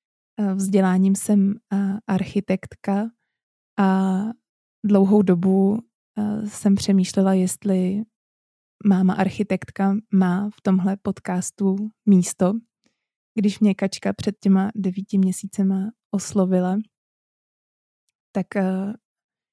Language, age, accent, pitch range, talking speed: Czech, 20-39, native, 190-210 Hz, 75 wpm